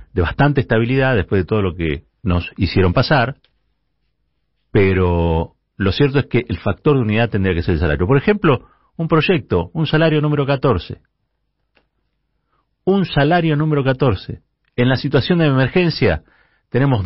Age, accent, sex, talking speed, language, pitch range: 40-59, Argentinian, male, 150 wpm, Spanish, 105-150 Hz